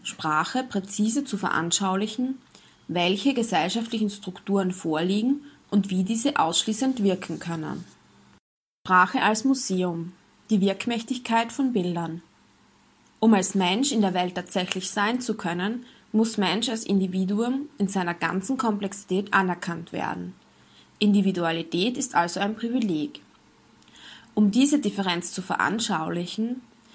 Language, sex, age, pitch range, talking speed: German, female, 20-39, 180-230 Hz, 115 wpm